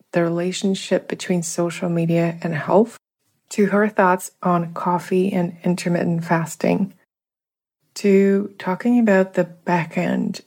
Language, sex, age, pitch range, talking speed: English, female, 20-39, 170-190 Hz, 120 wpm